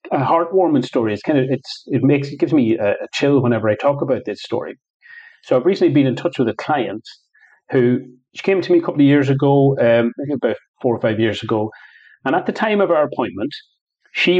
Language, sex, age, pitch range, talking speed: English, male, 30-49, 115-155 Hz, 235 wpm